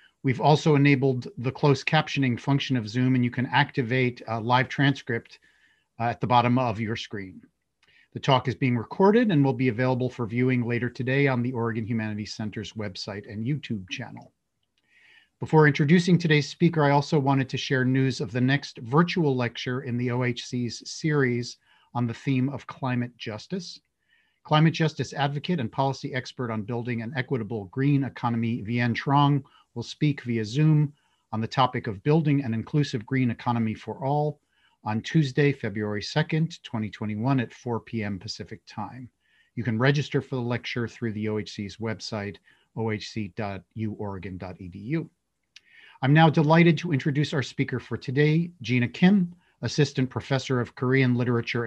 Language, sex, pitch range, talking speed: English, male, 115-140 Hz, 160 wpm